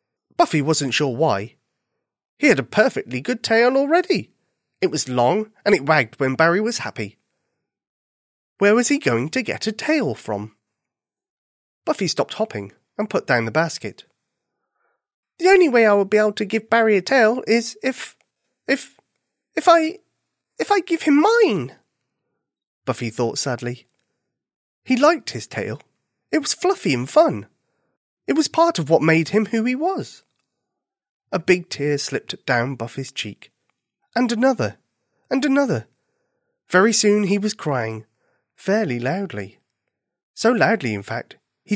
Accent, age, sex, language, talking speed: British, 30-49, male, English, 150 wpm